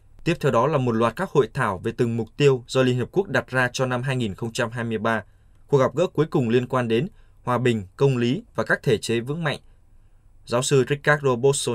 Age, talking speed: 20-39, 225 wpm